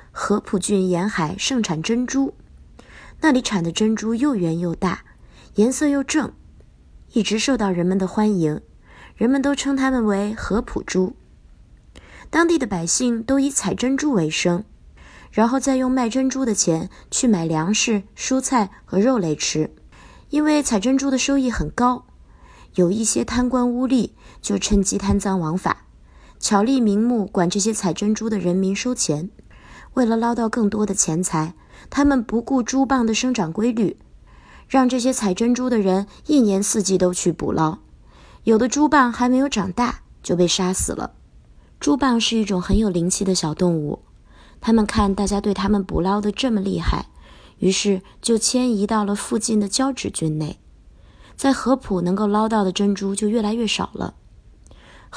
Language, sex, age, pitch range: Chinese, female, 20-39, 185-250 Hz